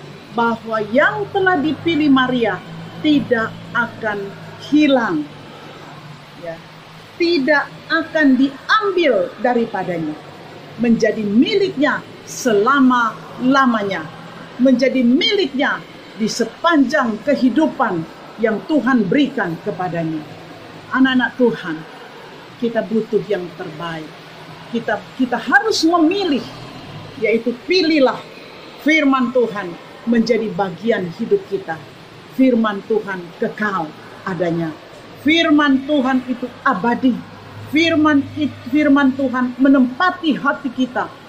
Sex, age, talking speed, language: female, 50-69, 85 wpm, Indonesian